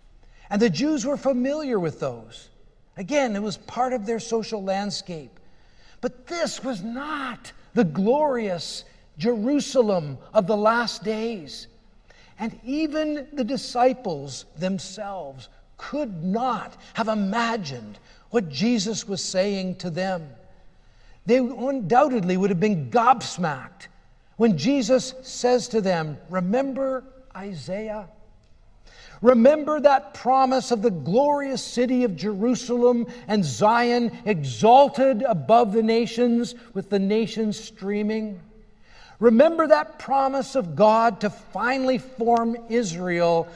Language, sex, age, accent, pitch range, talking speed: English, male, 50-69, American, 195-250 Hz, 115 wpm